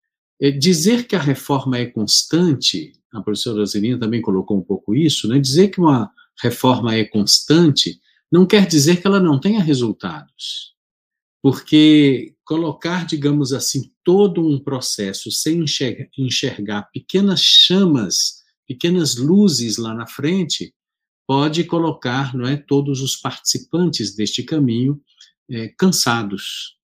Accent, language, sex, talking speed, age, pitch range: Brazilian, Portuguese, male, 120 wpm, 50-69, 120-165 Hz